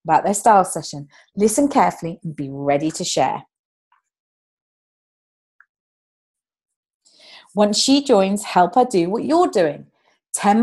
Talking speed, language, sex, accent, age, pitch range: 120 wpm, English, female, British, 30-49, 170-245 Hz